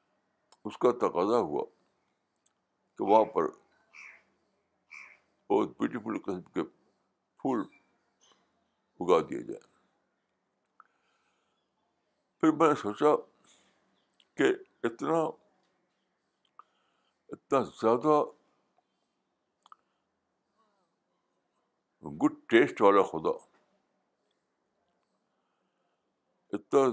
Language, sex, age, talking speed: Urdu, male, 60-79, 60 wpm